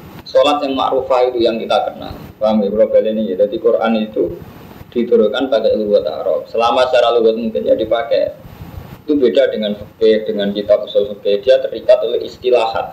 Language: Indonesian